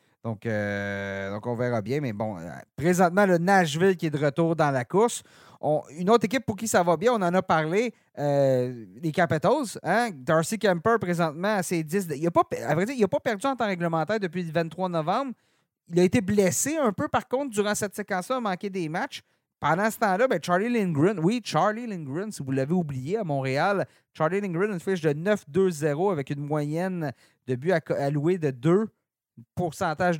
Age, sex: 40-59, male